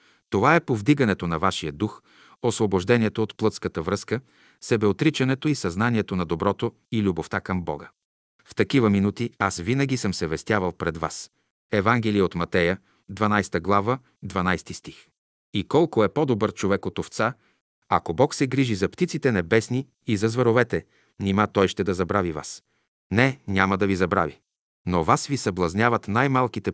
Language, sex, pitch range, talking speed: Bulgarian, male, 95-120 Hz, 155 wpm